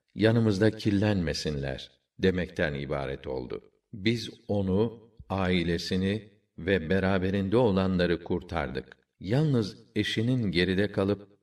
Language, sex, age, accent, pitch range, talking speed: Turkish, male, 50-69, native, 85-105 Hz, 85 wpm